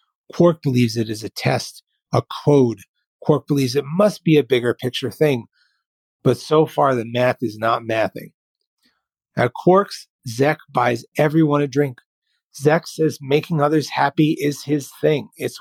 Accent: American